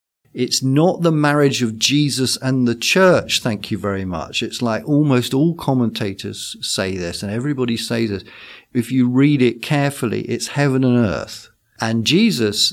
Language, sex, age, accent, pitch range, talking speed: English, male, 50-69, British, 110-135 Hz, 165 wpm